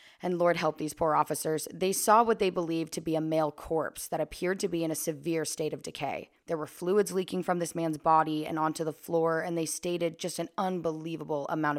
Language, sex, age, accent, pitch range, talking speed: English, female, 20-39, American, 155-195 Hz, 230 wpm